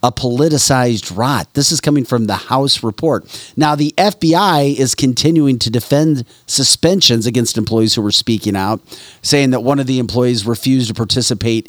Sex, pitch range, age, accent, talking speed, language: male, 115-135 Hz, 40-59, American, 170 wpm, English